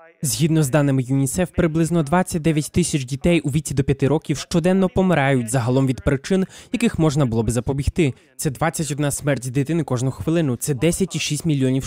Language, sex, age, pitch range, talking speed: Russian, male, 20-39, 135-175 Hz, 160 wpm